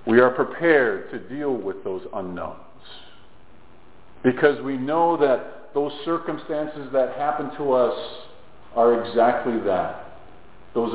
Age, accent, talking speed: 50-69, American, 120 wpm